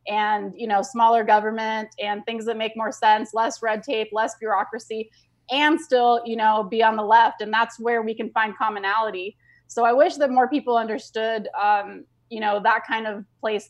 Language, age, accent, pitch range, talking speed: English, 20-39, American, 210-235 Hz, 195 wpm